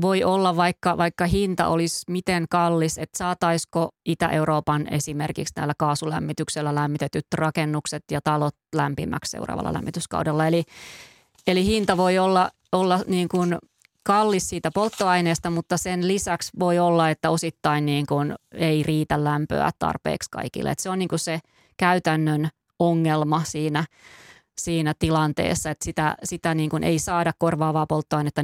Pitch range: 155-175 Hz